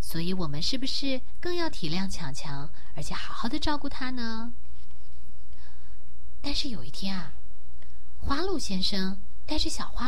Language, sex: Chinese, female